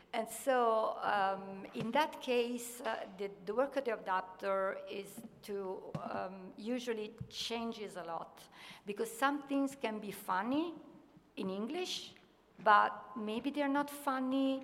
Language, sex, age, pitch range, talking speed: Italian, female, 50-69, 195-250 Hz, 135 wpm